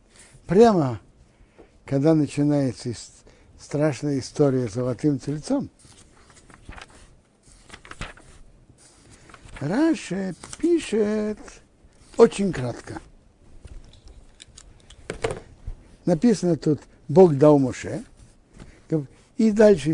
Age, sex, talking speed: 60-79, male, 55 wpm